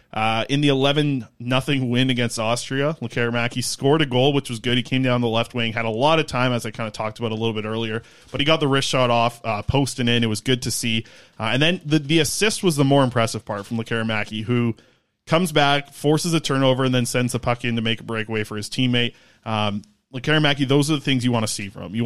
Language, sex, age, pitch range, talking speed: English, male, 20-39, 115-145 Hz, 260 wpm